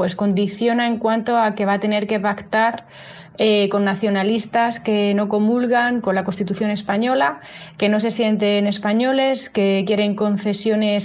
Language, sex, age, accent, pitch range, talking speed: Spanish, female, 30-49, Spanish, 200-230 Hz, 155 wpm